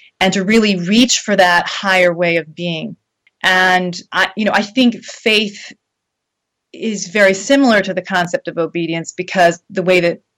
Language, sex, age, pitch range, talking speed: English, female, 30-49, 175-205 Hz, 170 wpm